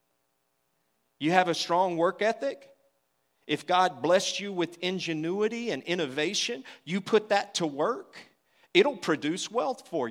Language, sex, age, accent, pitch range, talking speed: English, male, 40-59, American, 150-200 Hz, 135 wpm